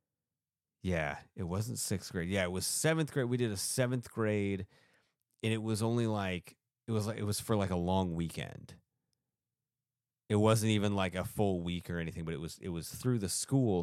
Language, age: English, 30-49